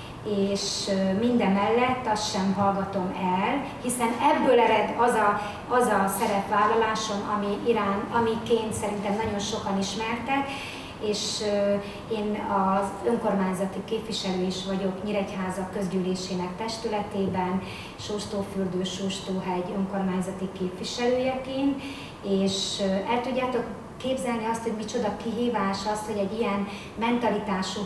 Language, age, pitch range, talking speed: Hungarian, 30-49, 195-230 Hz, 105 wpm